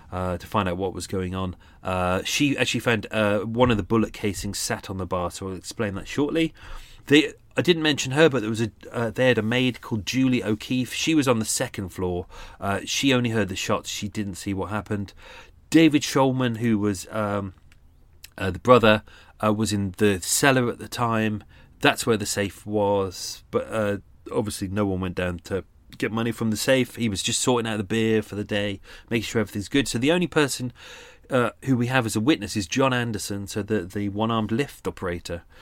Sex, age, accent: male, 30-49, British